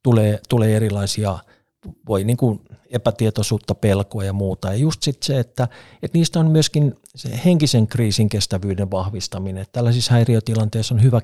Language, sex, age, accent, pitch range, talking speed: Finnish, male, 50-69, native, 105-125 Hz, 155 wpm